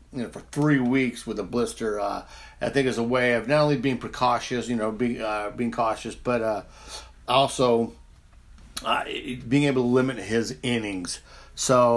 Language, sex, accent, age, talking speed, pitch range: English, male, American, 50-69, 180 wpm, 120-145 Hz